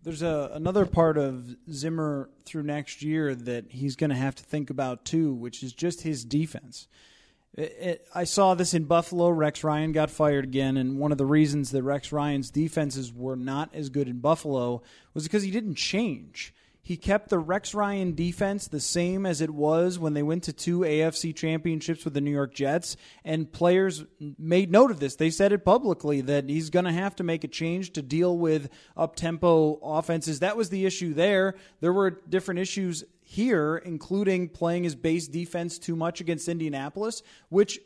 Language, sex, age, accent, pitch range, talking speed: English, male, 30-49, American, 150-190 Hz, 190 wpm